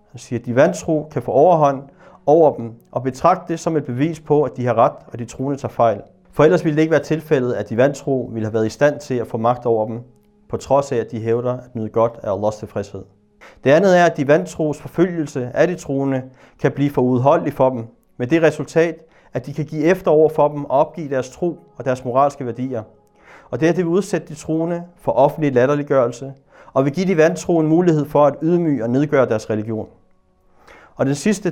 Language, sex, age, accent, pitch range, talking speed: Danish, male, 30-49, native, 125-160 Hz, 225 wpm